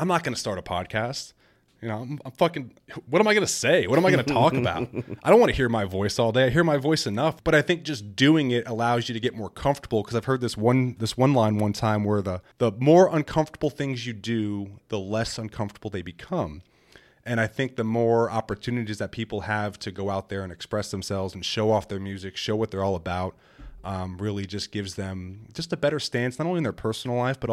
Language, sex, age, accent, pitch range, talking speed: English, male, 30-49, American, 100-125 Hz, 255 wpm